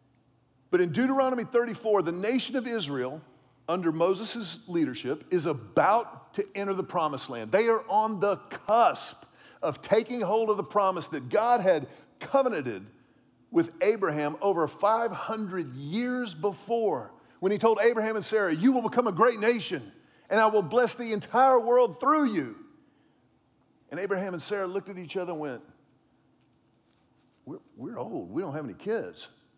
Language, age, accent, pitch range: English, 40-59, American, 165-225 Hz